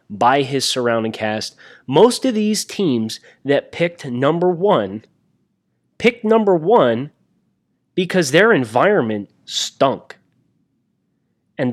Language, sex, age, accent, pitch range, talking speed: English, male, 30-49, American, 115-150 Hz, 100 wpm